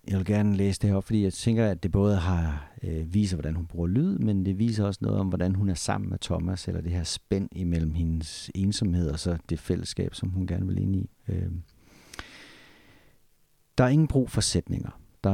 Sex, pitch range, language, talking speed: male, 85-105 Hz, Danish, 220 wpm